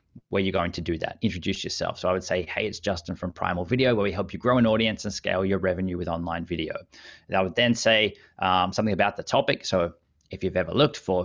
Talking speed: 255 wpm